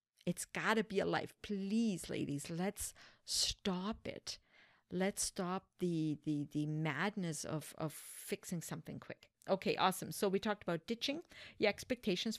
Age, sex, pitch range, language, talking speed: 50-69, female, 185-235 Hz, English, 150 wpm